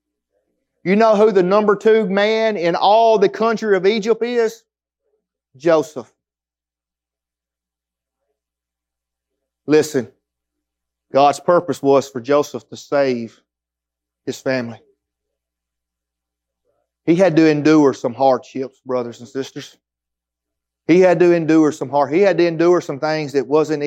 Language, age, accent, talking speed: English, 30-49, American, 120 wpm